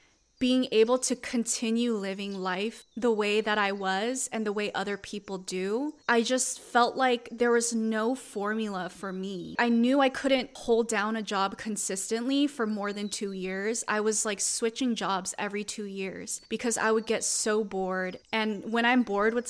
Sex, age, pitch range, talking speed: female, 20-39, 200-240 Hz, 185 wpm